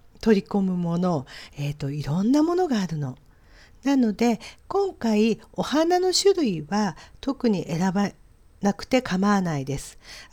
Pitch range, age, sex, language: 175-255 Hz, 50-69, female, Japanese